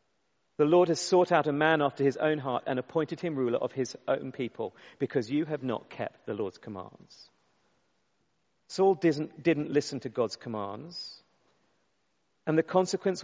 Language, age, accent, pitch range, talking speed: English, 40-59, British, 130-180 Hz, 170 wpm